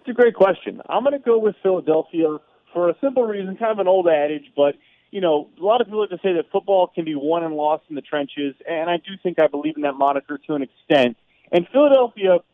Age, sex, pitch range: 30-49, male, 145-180 Hz